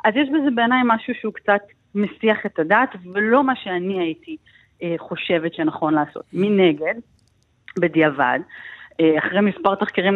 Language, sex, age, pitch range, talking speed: Hebrew, female, 30-49, 165-210 Hz, 140 wpm